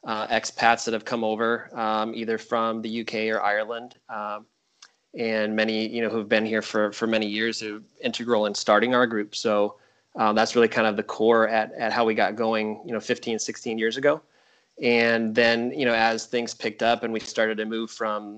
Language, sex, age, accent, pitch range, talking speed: English, male, 20-39, American, 110-115 Hz, 210 wpm